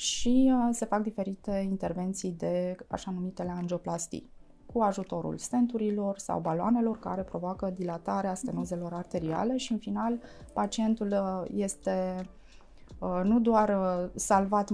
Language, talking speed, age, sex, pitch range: Romanian, 105 wpm, 20-39, female, 180-215 Hz